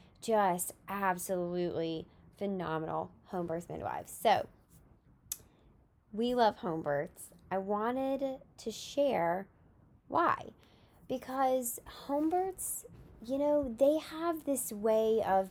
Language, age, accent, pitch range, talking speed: English, 20-39, American, 180-225 Hz, 100 wpm